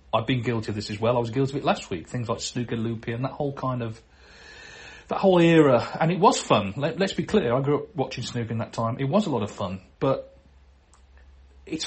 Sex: male